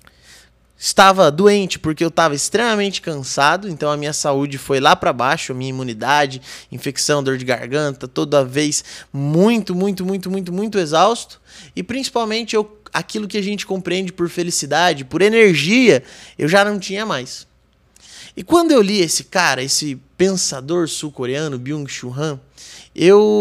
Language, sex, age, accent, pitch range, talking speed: Portuguese, male, 20-39, Brazilian, 150-210 Hz, 150 wpm